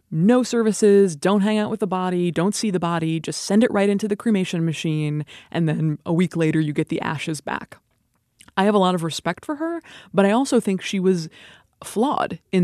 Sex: female